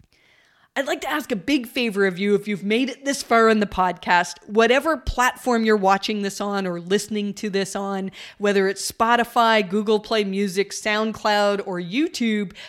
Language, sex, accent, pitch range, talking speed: English, female, American, 195-240 Hz, 180 wpm